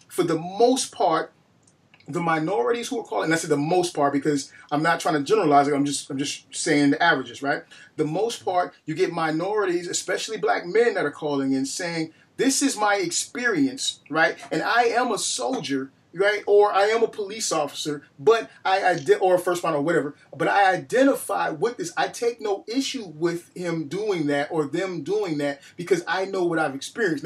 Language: English